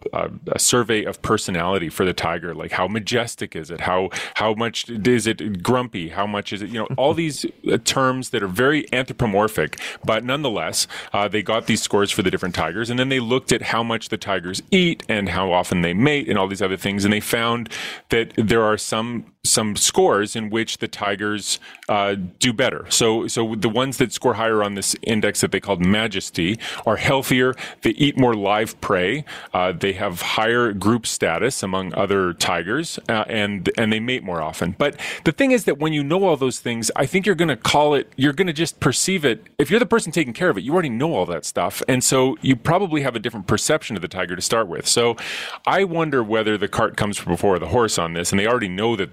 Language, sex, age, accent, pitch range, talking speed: English, male, 30-49, American, 100-130 Hz, 225 wpm